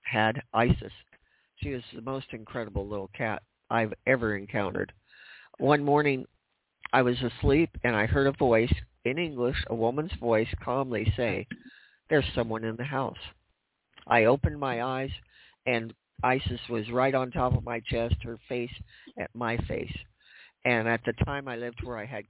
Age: 50-69